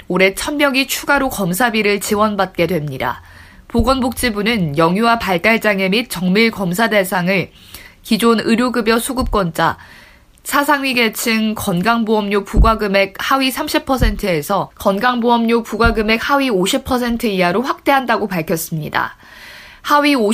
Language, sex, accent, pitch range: Korean, female, native, 190-240 Hz